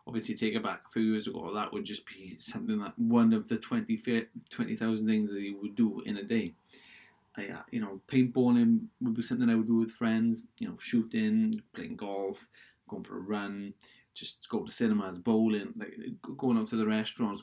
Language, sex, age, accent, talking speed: English, male, 20-39, British, 205 wpm